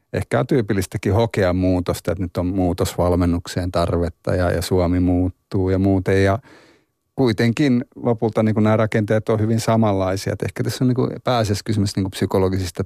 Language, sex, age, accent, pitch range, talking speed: Finnish, male, 30-49, native, 95-110 Hz, 160 wpm